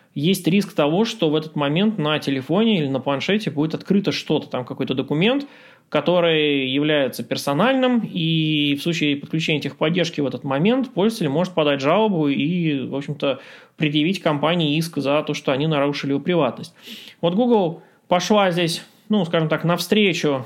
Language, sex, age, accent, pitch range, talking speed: Russian, male, 20-39, native, 145-195 Hz, 160 wpm